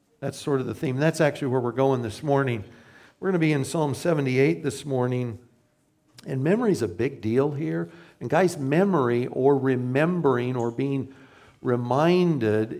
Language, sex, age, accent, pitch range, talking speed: English, male, 60-79, American, 130-170 Hz, 170 wpm